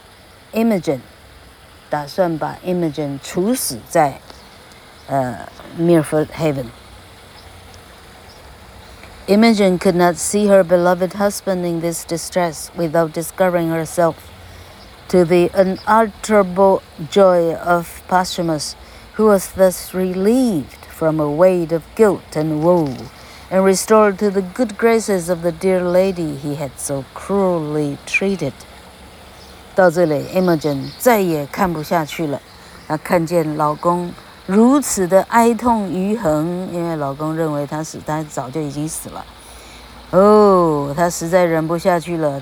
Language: Chinese